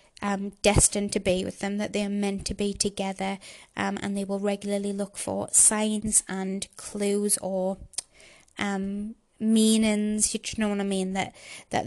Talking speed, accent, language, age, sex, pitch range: 165 wpm, British, English, 20-39, female, 195-215 Hz